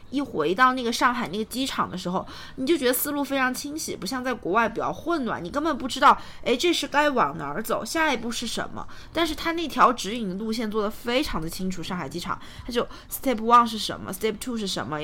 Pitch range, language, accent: 185-255 Hz, Chinese, native